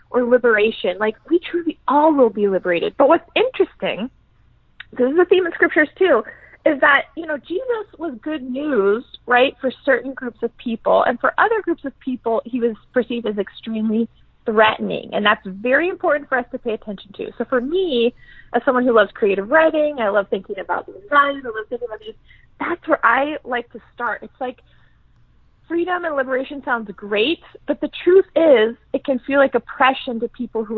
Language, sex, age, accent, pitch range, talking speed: English, female, 30-49, American, 220-300 Hz, 195 wpm